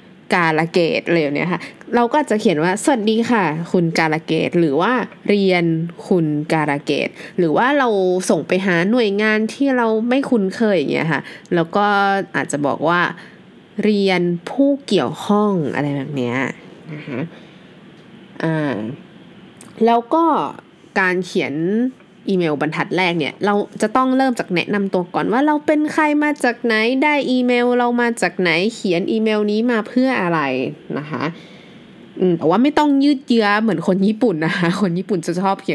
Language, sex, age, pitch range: Thai, female, 20-39, 175-240 Hz